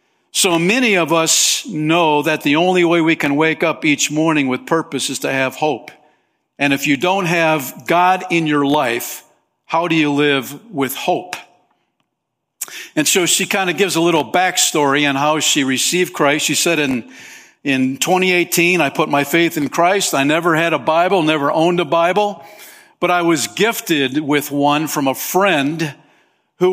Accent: American